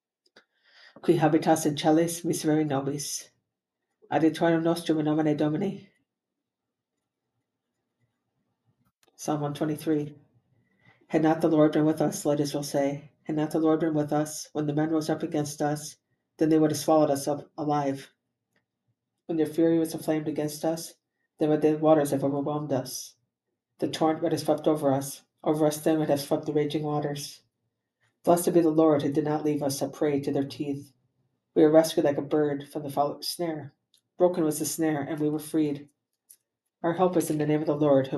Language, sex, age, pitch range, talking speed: English, female, 50-69, 145-160 Hz, 185 wpm